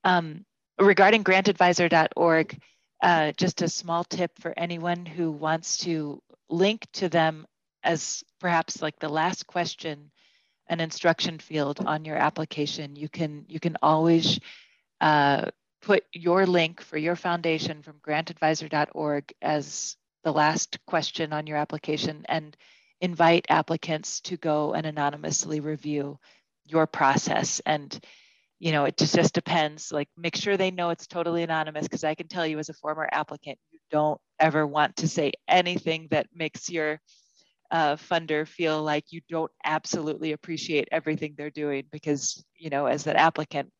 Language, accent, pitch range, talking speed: English, American, 150-170 Hz, 150 wpm